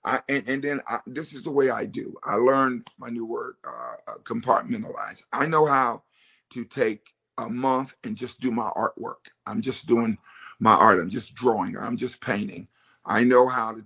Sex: male